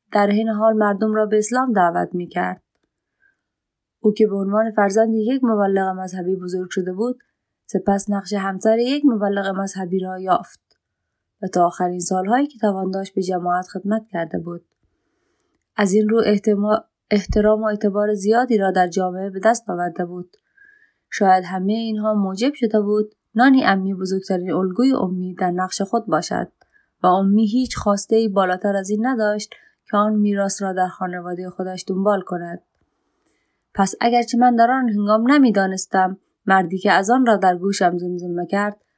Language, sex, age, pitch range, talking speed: Persian, female, 20-39, 185-220 Hz, 160 wpm